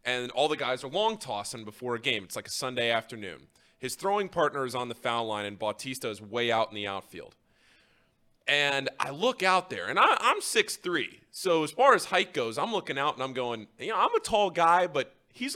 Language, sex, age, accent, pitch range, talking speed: English, male, 20-39, American, 120-175 Hz, 230 wpm